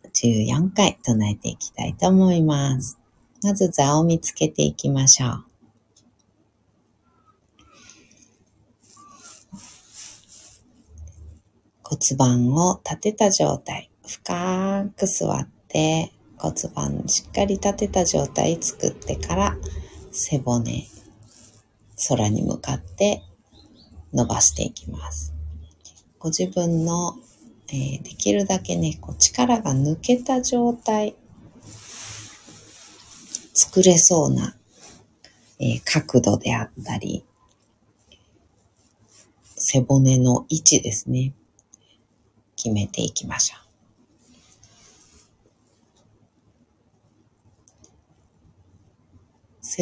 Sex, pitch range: female, 105-165 Hz